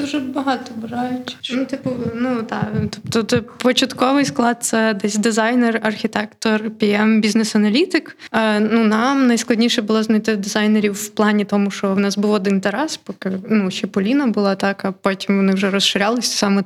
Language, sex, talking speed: Ukrainian, female, 150 wpm